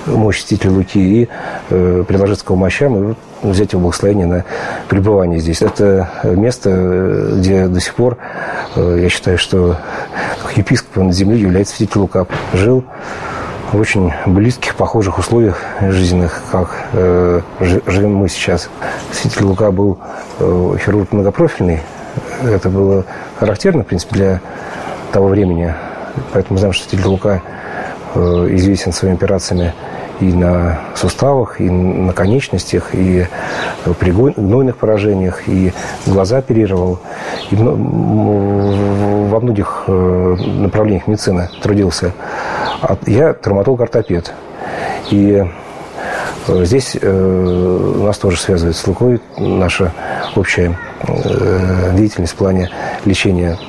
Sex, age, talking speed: male, 40-59, 115 wpm